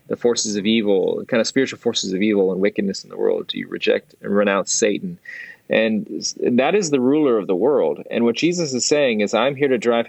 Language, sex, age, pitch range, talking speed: English, male, 30-49, 105-140 Hz, 230 wpm